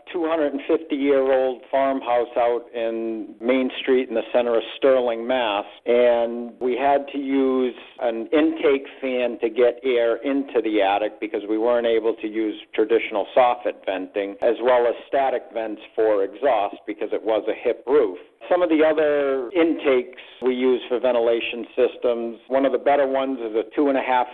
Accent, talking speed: American, 170 wpm